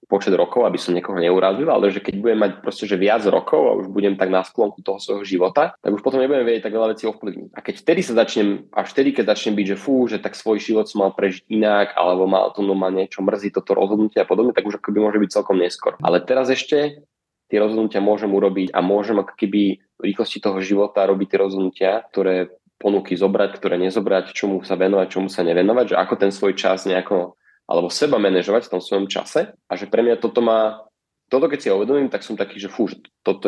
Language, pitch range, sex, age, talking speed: Slovak, 95-110 Hz, male, 20-39, 230 wpm